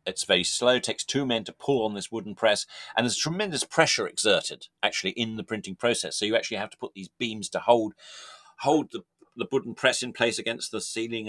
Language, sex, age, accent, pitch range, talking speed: English, male, 40-59, British, 100-125 Hz, 230 wpm